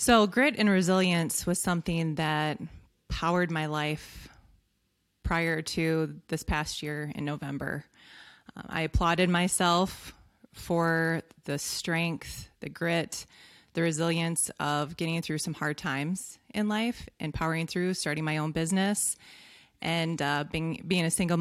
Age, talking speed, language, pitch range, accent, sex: 20-39, 135 wpm, English, 155-190 Hz, American, female